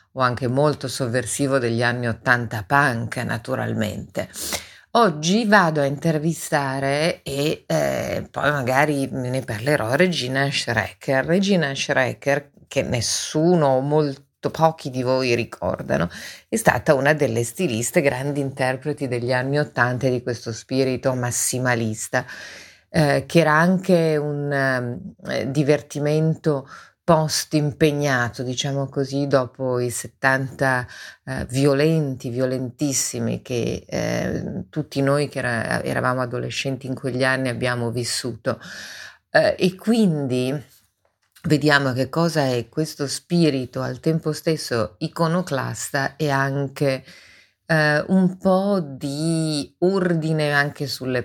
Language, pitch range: Italian, 125-155 Hz